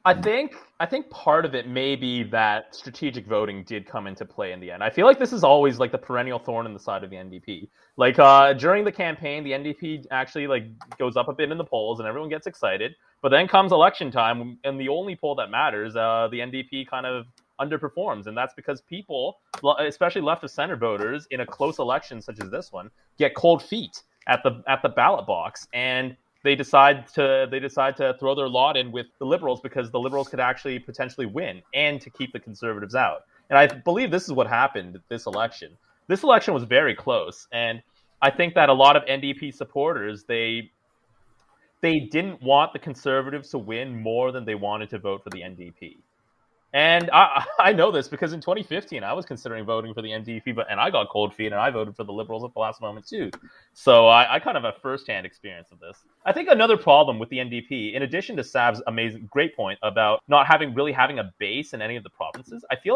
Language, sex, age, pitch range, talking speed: English, male, 30-49, 115-150 Hz, 225 wpm